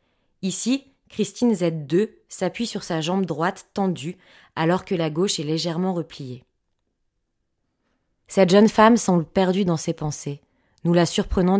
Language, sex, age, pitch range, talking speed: French, female, 20-39, 155-190 Hz, 140 wpm